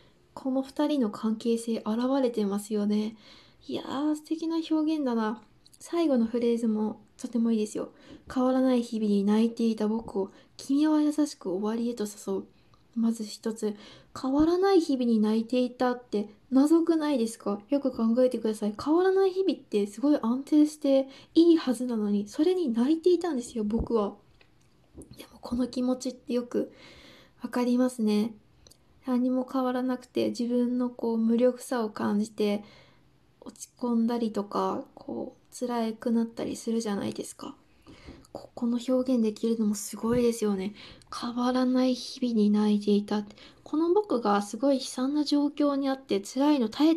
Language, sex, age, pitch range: Japanese, female, 20-39, 215-270 Hz